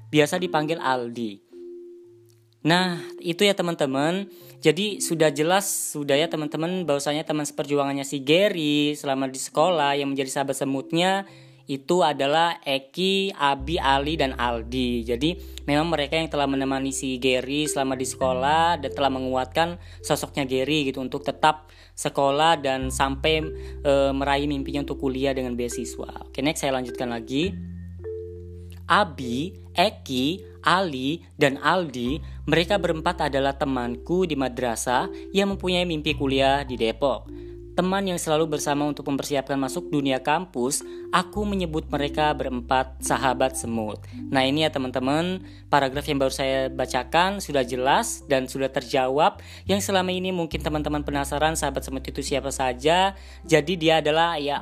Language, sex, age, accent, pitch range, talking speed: Indonesian, female, 20-39, native, 130-160 Hz, 140 wpm